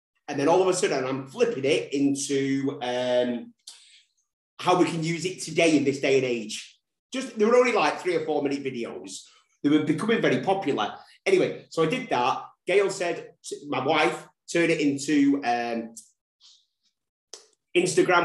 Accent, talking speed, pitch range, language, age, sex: British, 170 wpm, 125-195 Hz, English, 30-49, male